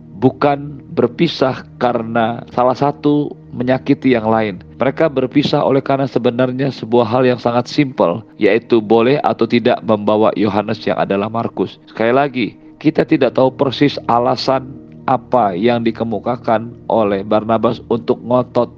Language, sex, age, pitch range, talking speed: Indonesian, male, 40-59, 105-130 Hz, 130 wpm